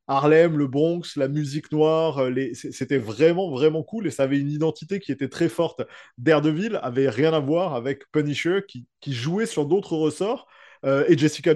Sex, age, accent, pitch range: male, 20-39, French, 140-175 Hz